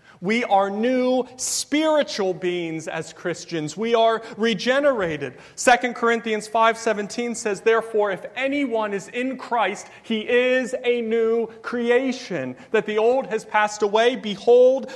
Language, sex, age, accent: English, male, 30-49, American